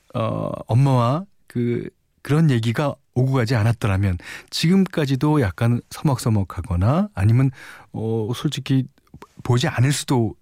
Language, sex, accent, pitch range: Korean, male, native, 95-140 Hz